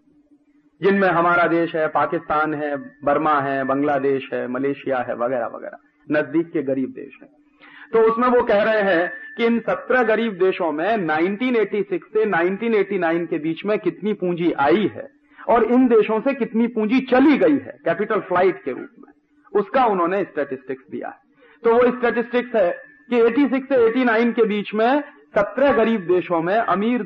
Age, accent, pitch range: 40-59, native, 175-270 Hz